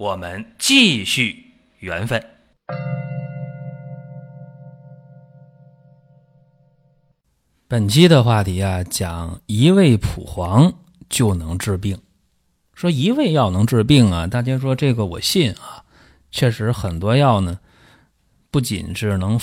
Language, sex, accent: Chinese, male, native